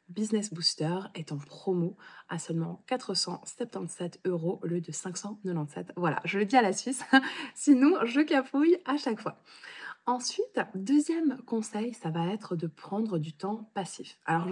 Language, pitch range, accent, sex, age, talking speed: French, 175-235 Hz, French, female, 20-39, 155 wpm